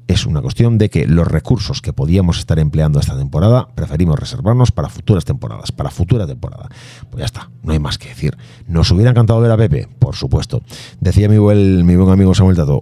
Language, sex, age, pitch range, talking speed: Spanish, male, 40-59, 85-115 Hz, 210 wpm